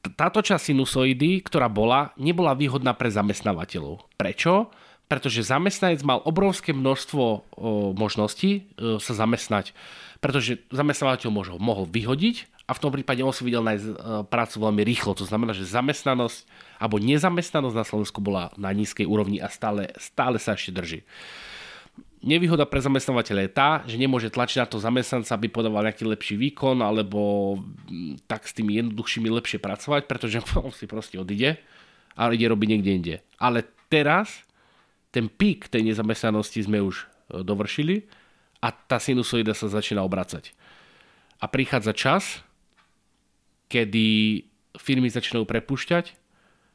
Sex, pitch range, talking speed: male, 105-135 Hz, 140 wpm